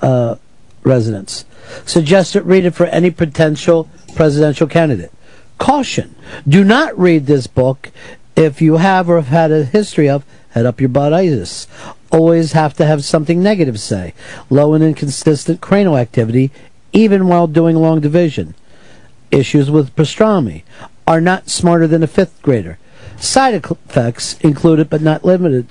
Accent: American